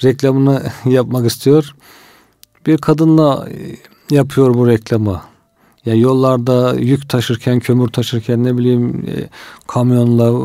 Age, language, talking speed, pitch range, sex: 40-59, Turkish, 110 wpm, 120-140 Hz, male